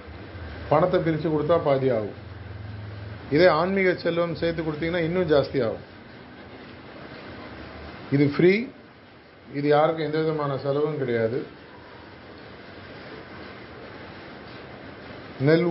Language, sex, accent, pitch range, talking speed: Tamil, male, native, 135-165 Hz, 85 wpm